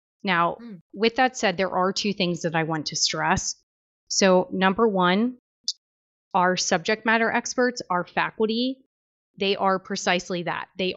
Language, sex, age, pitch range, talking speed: English, female, 30-49, 175-210 Hz, 150 wpm